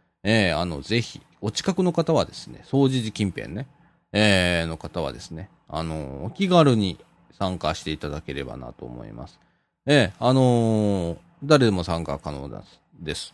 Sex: male